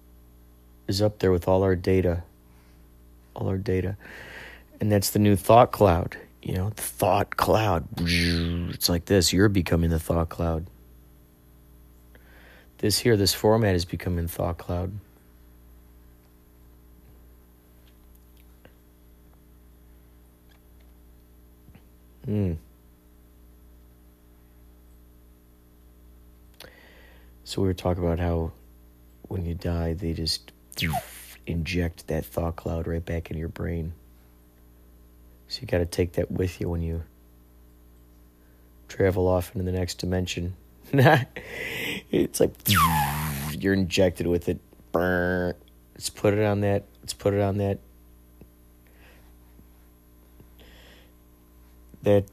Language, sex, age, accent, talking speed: English, male, 40-59, American, 100 wpm